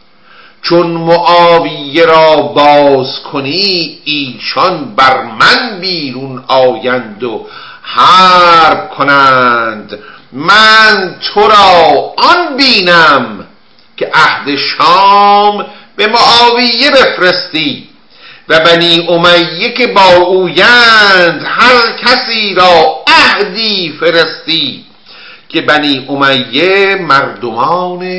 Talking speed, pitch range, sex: 85 wpm, 160-220 Hz, male